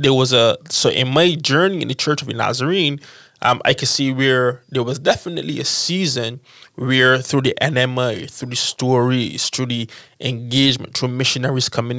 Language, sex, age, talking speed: English, male, 20-39, 175 wpm